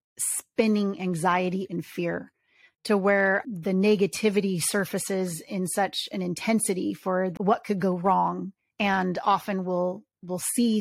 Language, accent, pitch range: English, American, 185-205 Hz